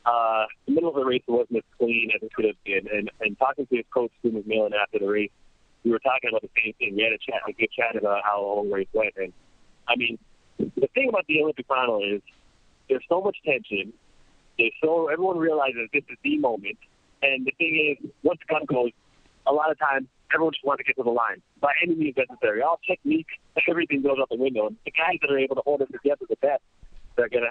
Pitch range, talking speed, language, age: 110-150 Hz, 245 wpm, English, 40-59